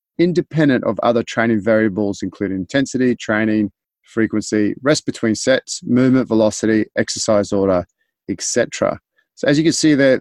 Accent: Australian